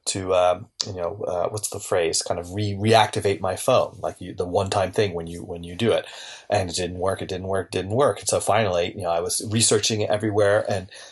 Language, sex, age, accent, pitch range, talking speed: English, male, 30-49, American, 100-120 Hz, 245 wpm